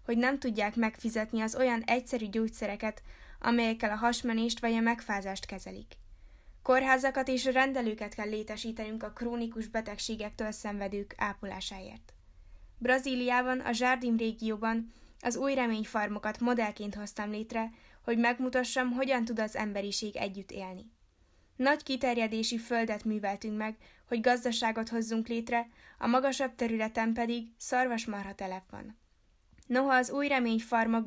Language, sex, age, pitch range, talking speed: Hungarian, female, 10-29, 210-245 Hz, 120 wpm